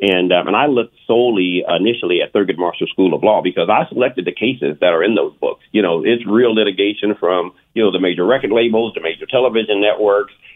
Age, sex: 50-69, male